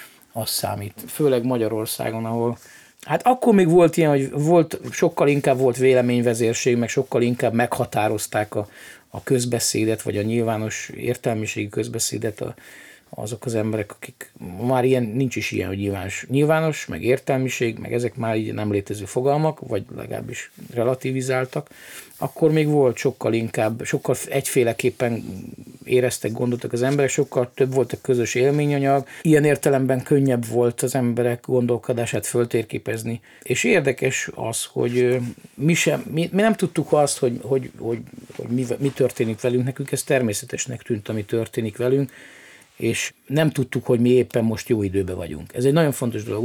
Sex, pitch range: male, 115-140 Hz